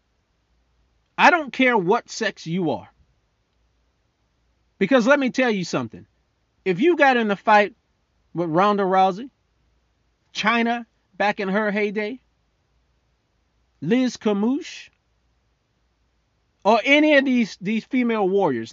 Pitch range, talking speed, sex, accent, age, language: 180-250 Hz, 115 wpm, male, American, 40-59, English